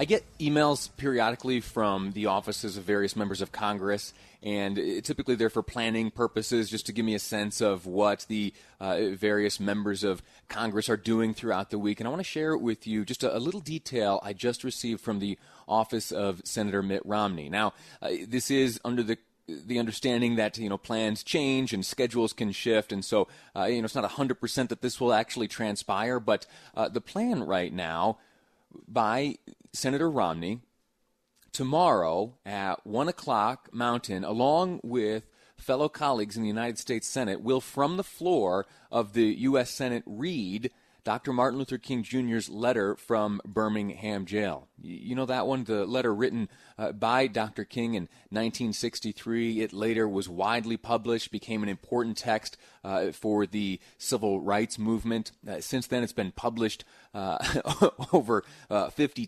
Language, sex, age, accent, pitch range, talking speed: English, male, 30-49, American, 105-125 Hz, 170 wpm